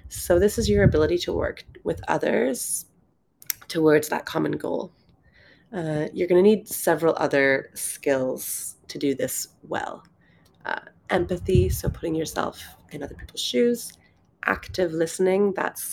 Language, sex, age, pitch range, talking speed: English, female, 30-49, 150-180 Hz, 140 wpm